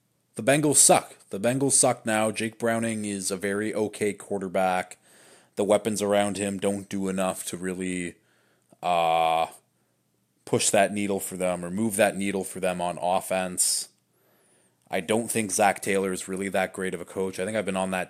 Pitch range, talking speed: 90-110 Hz, 180 wpm